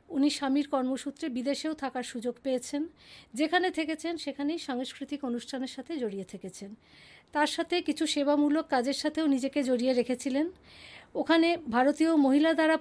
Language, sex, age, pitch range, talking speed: English, female, 50-69, 250-315 Hz, 130 wpm